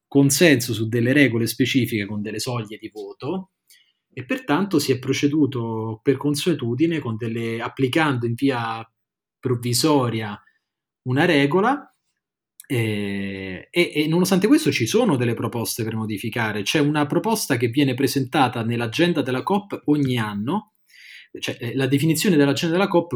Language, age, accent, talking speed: Italian, 30-49, native, 140 wpm